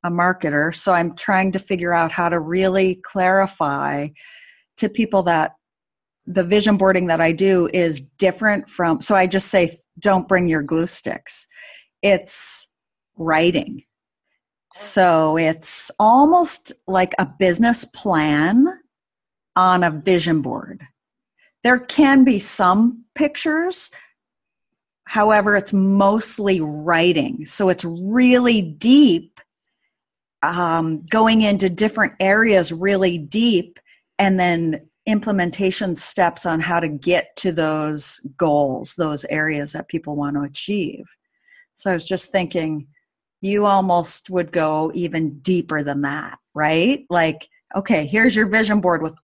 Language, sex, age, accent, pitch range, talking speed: English, female, 40-59, American, 165-220 Hz, 130 wpm